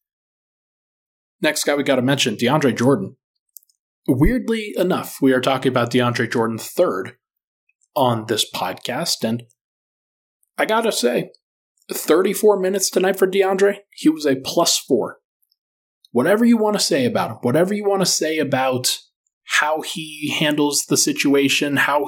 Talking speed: 145 wpm